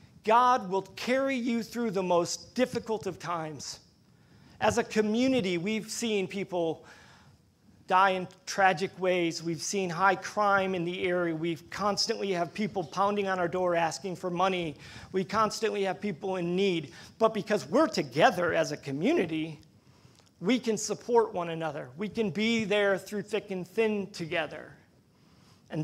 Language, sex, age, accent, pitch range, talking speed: English, male, 40-59, American, 175-225 Hz, 155 wpm